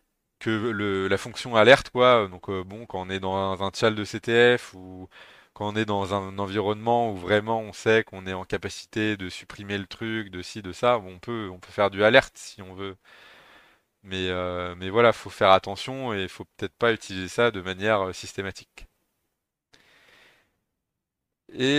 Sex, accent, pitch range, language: male, French, 95-115 Hz, French